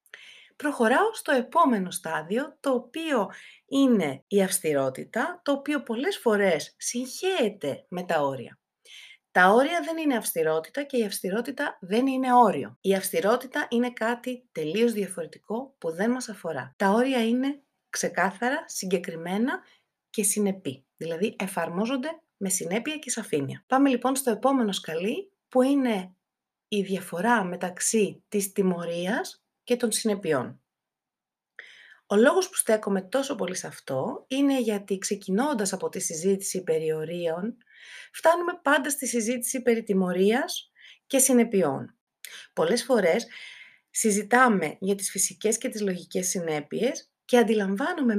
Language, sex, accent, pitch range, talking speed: Greek, female, native, 185-255 Hz, 125 wpm